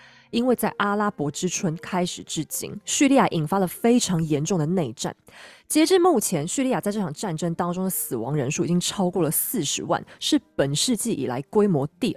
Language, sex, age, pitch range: Chinese, female, 20-39, 155-230 Hz